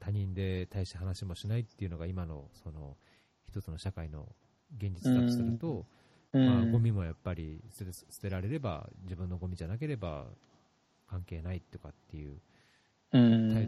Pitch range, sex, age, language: 90-120 Hz, male, 40-59, Japanese